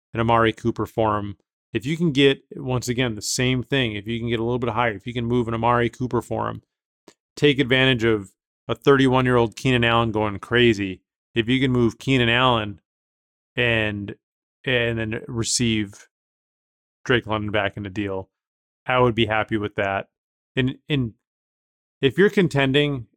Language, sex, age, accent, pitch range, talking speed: English, male, 30-49, American, 110-125 Hz, 180 wpm